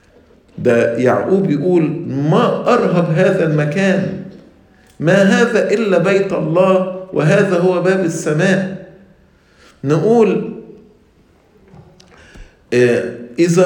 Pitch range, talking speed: 155-200 Hz, 80 wpm